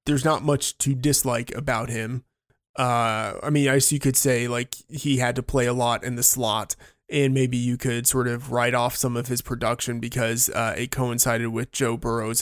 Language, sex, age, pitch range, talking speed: English, male, 20-39, 115-135 Hz, 210 wpm